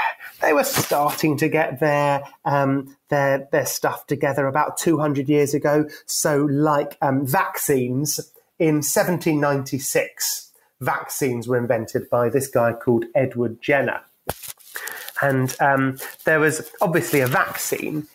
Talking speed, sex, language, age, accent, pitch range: 120 wpm, male, English, 30-49, British, 135-180 Hz